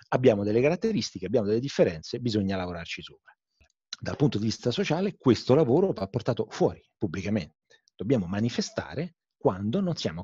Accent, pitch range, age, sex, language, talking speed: native, 100-135 Hz, 30-49, male, Italian, 145 wpm